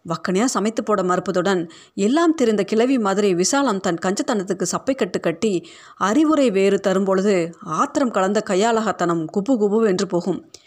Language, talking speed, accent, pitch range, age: Tamil, 135 wpm, native, 185-235 Hz, 30-49